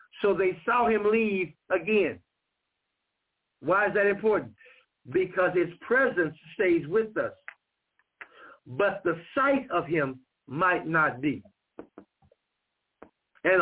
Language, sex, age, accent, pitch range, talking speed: English, male, 60-79, American, 170-225 Hz, 110 wpm